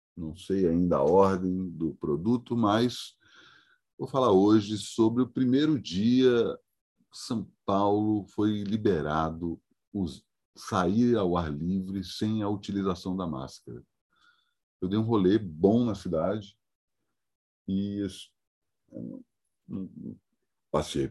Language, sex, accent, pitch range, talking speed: Portuguese, male, Brazilian, 85-115 Hz, 110 wpm